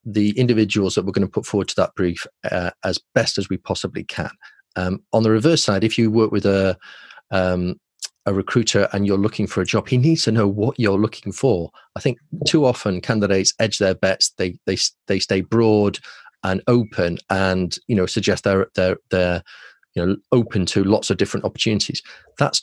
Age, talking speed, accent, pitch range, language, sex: 30-49, 200 wpm, British, 90-110 Hz, English, male